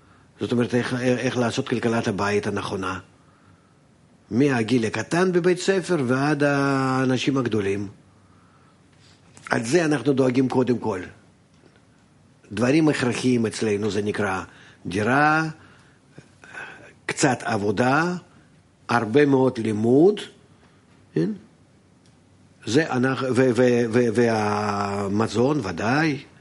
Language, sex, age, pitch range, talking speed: Hebrew, male, 50-69, 105-135 Hz, 85 wpm